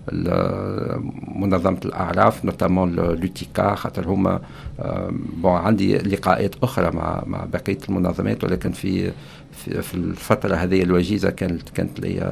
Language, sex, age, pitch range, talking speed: French, male, 50-69, 95-115 Hz, 60 wpm